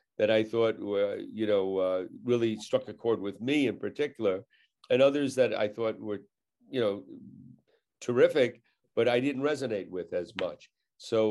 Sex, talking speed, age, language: male, 170 wpm, 50-69, English